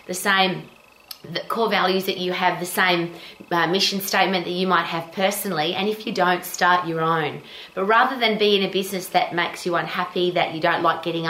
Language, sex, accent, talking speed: English, female, Australian, 215 wpm